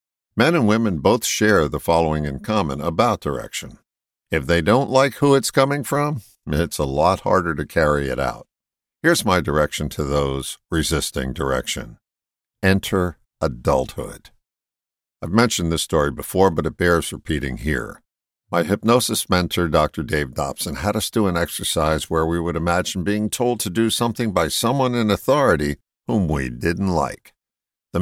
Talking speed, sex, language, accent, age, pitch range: 160 wpm, male, English, American, 60-79, 75-105 Hz